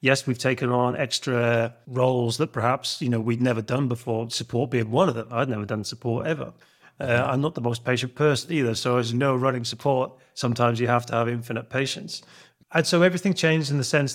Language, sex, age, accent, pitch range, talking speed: English, male, 30-49, British, 120-135 Hz, 215 wpm